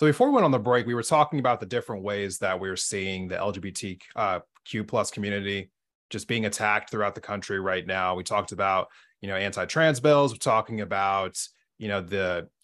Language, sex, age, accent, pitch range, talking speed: English, male, 30-49, American, 100-120 Hz, 205 wpm